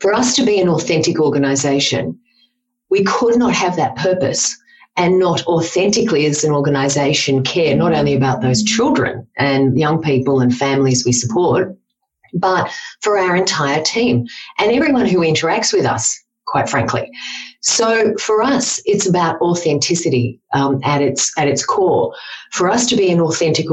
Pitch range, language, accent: 140-205 Hz, English, Australian